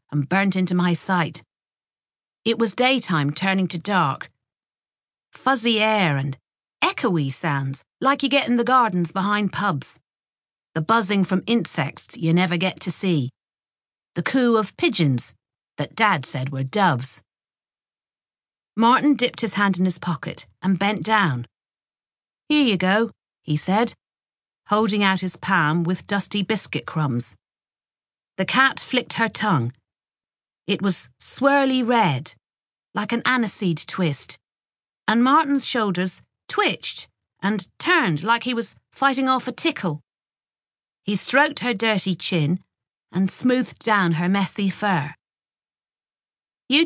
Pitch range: 165-235 Hz